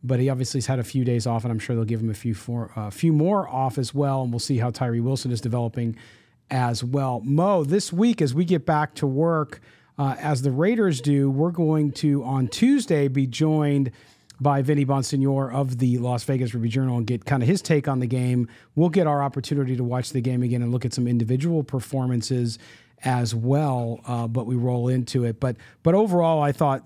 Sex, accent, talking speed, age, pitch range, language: male, American, 225 wpm, 40-59, 120-145 Hz, English